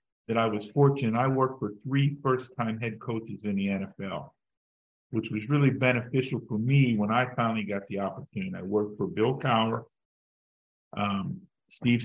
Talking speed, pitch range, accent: 165 wpm, 105-120 Hz, American